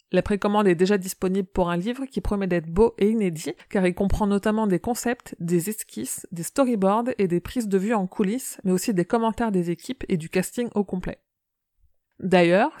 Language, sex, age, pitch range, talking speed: French, female, 30-49, 180-225 Hz, 200 wpm